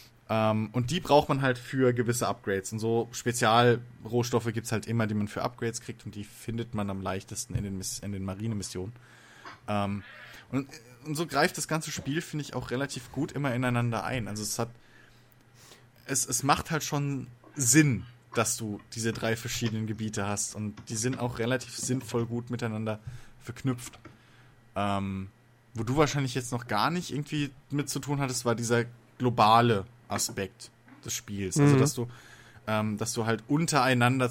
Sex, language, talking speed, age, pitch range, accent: male, German, 175 wpm, 20-39, 110-130 Hz, German